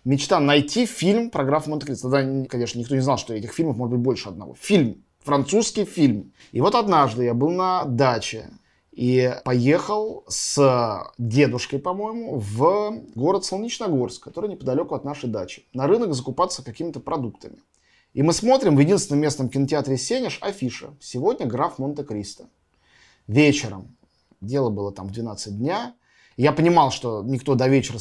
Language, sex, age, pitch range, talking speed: Russian, male, 20-39, 120-150 Hz, 150 wpm